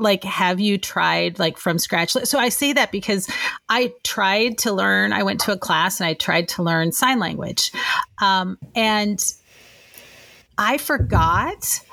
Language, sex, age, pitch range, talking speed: English, female, 30-49, 175-235 Hz, 160 wpm